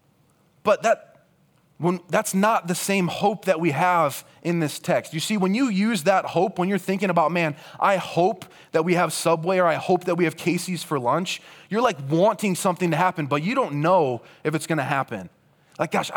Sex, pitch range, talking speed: male, 150-190 Hz, 210 wpm